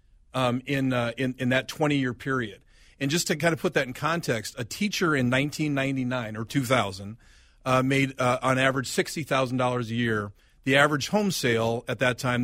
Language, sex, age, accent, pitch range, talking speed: English, male, 40-59, American, 120-150 Hz, 200 wpm